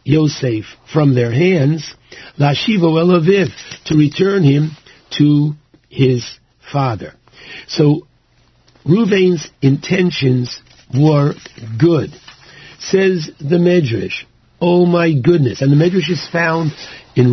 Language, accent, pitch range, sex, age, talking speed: English, American, 135-180 Hz, male, 60-79, 95 wpm